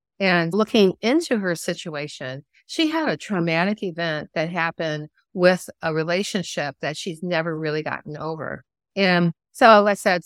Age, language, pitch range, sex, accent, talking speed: 50-69, English, 160-195 Hz, female, American, 145 wpm